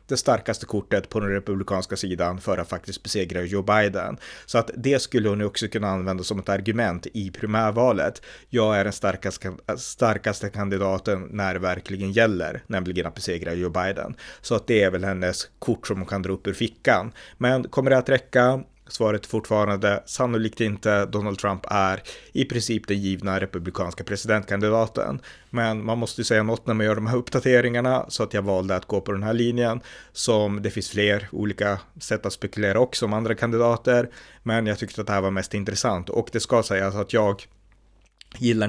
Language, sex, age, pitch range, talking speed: Swedish, male, 30-49, 100-115 Hz, 190 wpm